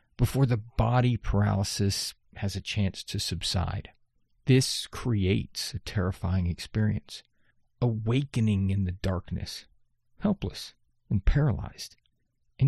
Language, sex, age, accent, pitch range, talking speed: English, male, 40-59, American, 105-150 Hz, 105 wpm